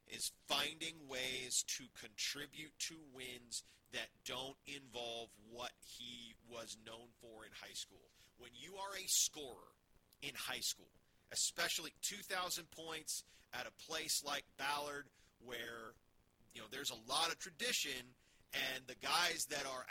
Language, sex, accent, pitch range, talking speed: English, male, American, 115-140 Hz, 140 wpm